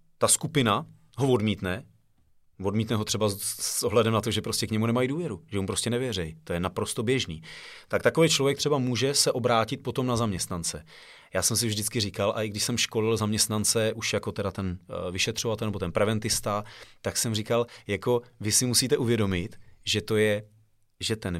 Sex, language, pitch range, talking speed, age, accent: male, Czech, 105-120 Hz, 190 wpm, 30-49, native